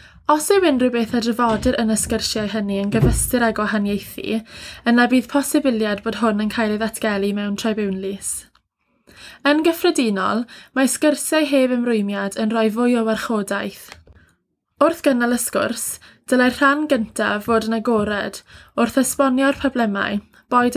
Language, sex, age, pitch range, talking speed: English, female, 20-39, 215-255 Hz, 145 wpm